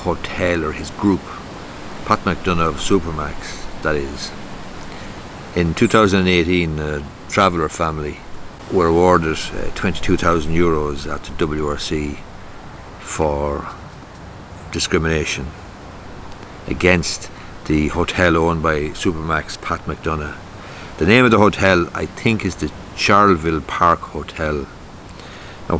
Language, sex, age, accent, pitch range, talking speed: English, male, 60-79, Irish, 75-95 Hz, 105 wpm